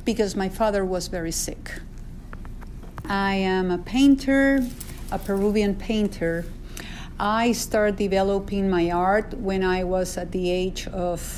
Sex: female